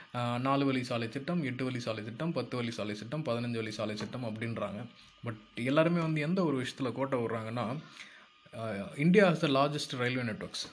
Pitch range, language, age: 115-140 Hz, Tamil, 20-39